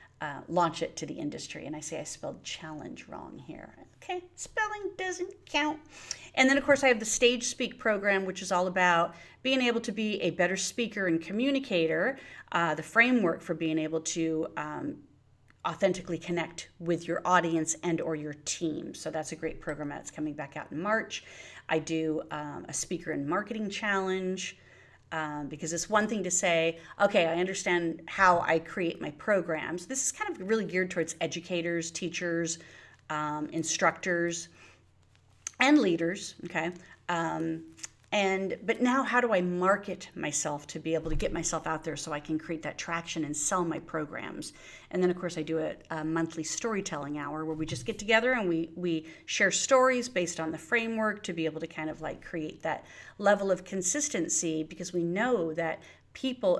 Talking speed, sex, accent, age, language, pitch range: 185 wpm, female, American, 40-59, English, 160-220 Hz